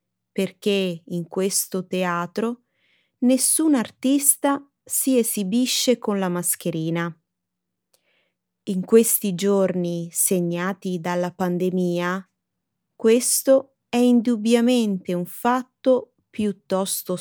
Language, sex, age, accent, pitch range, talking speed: Italian, female, 30-49, native, 180-250 Hz, 80 wpm